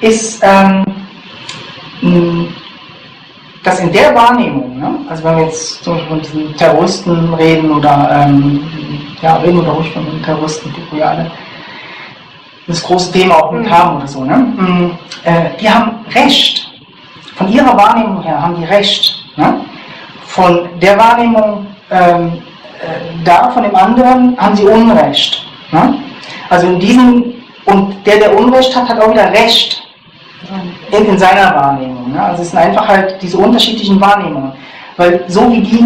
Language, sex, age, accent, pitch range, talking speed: German, female, 40-59, German, 165-210 Hz, 150 wpm